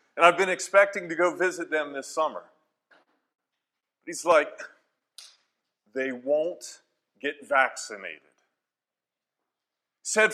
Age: 40-59